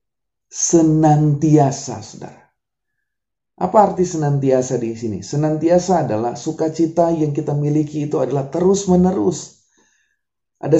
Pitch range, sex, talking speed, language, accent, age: 140-175 Hz, male, 95 wpm, Indonesian, native, 30-49